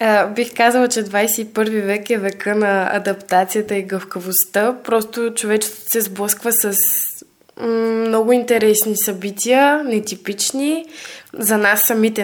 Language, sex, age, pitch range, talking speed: Bulgarian, female, 20-39, 205-245 Hz, 115 wpm